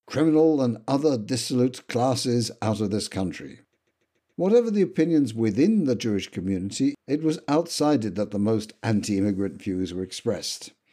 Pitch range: 105-155 Hz